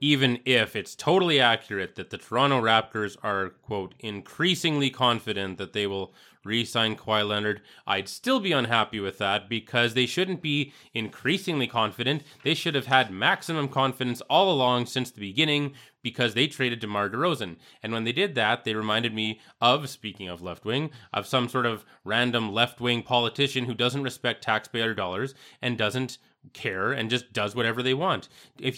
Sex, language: male, English